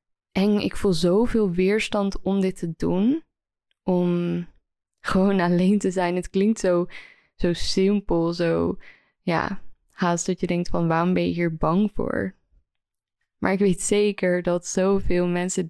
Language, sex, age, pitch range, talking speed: Dutch, female, 20-39, 170-195 Hz, 150 wpm